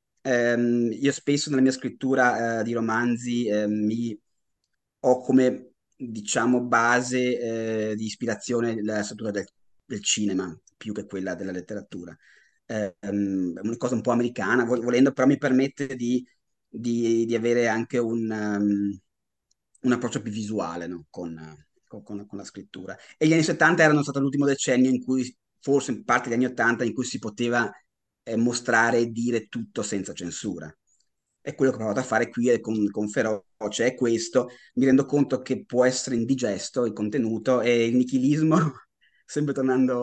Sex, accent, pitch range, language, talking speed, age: male, native, 110-130 Hz, Italian, 165 wpm, 30-49